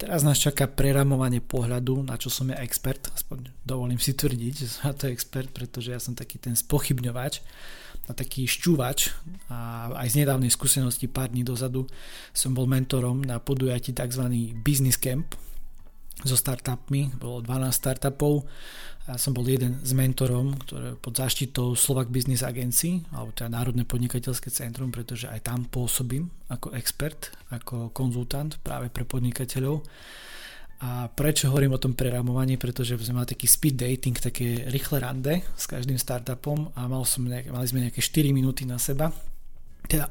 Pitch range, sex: 125-140 Hz, male